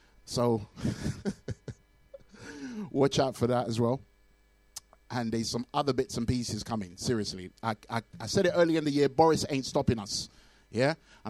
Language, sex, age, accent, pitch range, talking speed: English, male, 30-49, British, 110-135 Hz, 160 wpm